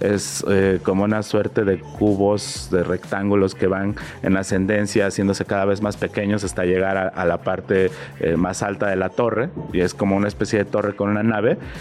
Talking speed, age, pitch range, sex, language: 205 wpm, 30-49, 95-110 Hz, male, Spanish